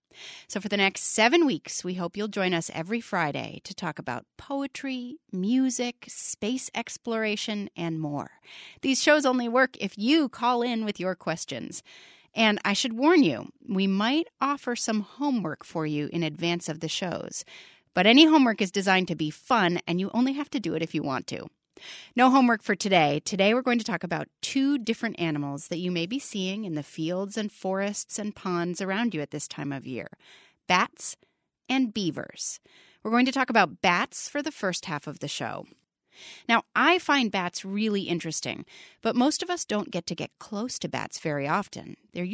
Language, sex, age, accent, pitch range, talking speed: English, female, 30-49, American, 170-245 Hz, 195 wpm